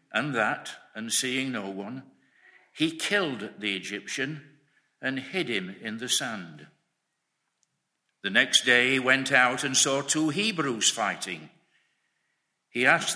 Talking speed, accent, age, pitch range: 130 wpm, British, 60-79, 115-170 Hz